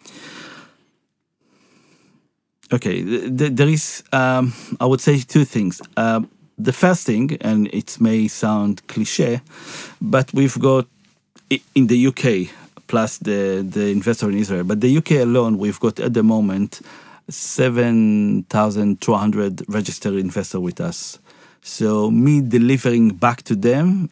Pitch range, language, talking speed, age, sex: 105-130 Hz, English, 125 wpm, 50-69, male